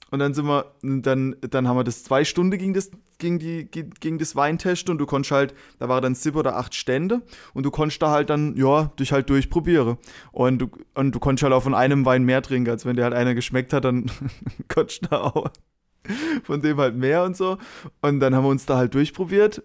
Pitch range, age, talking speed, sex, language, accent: 130-155 Hz, 20-39, 230 wpm, male, German, German